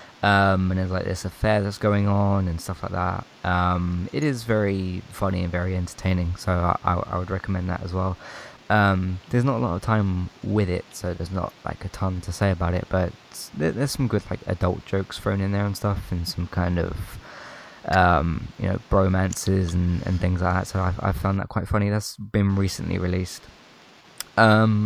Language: English